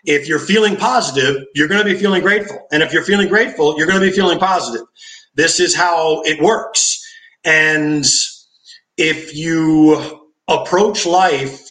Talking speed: 160 wpm